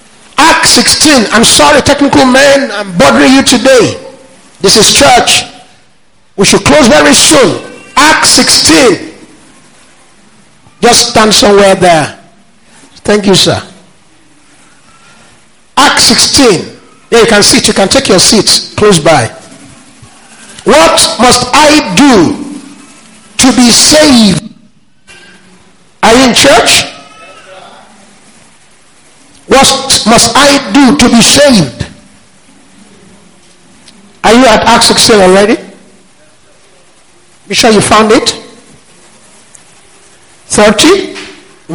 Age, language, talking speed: 50-69, English, 100 wpm